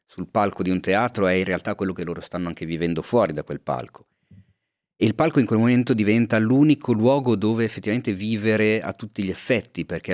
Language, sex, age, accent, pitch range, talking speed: Italian, male, 30-49, native, 85-110 Hz, 205 wpm